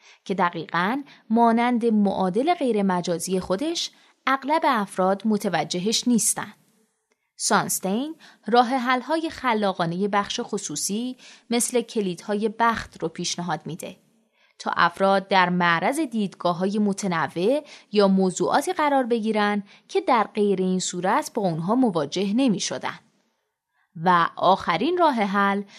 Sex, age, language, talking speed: female, 20-39, Persian, 105 wpm